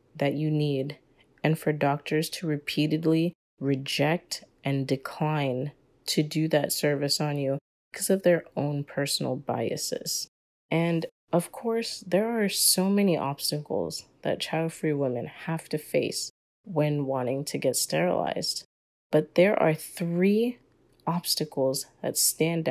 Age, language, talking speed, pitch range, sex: 30-49, English, 130 wpm, 140-170 Hz, female